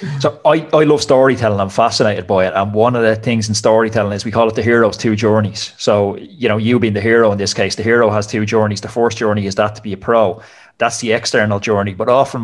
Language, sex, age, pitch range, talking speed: English, male, 30-49, 100-120 Hz, 260 wpm